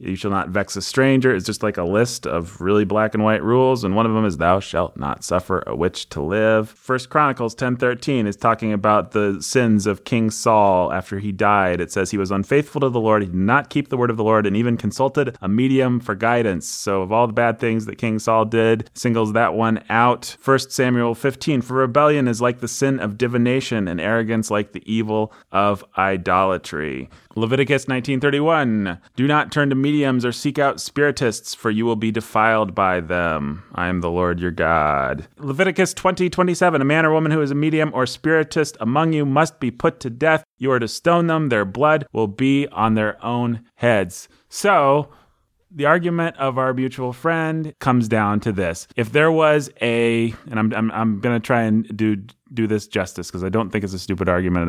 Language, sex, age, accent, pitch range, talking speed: English, male, 30-49, American, 105-135 Hz, 215 wpm